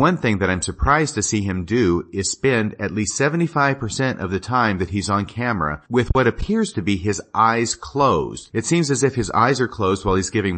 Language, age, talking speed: English, 40-59, 225 wpm